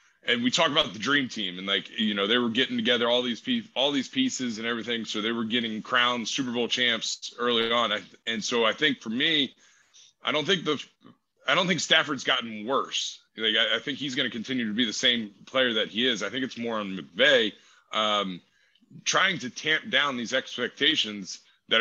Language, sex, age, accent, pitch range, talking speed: English, male, 30-49, American, 105-130 Hz, 220 wpm